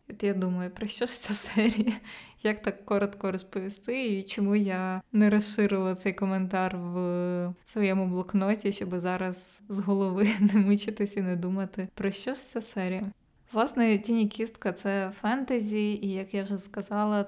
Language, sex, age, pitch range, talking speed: Ukrainian, female, 20-39, 190-210 Hz, 155 wpm